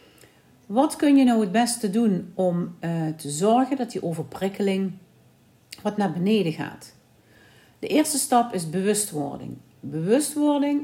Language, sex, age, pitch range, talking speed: Dutch, female, 50-69, 160-235 Hz, 125 wpm